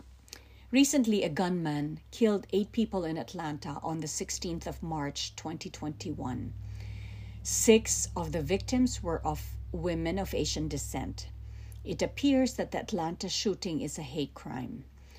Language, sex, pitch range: English, female, 150-200 Hz